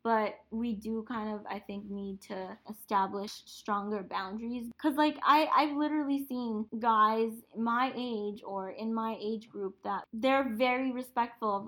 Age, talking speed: 10-29, 155 wpm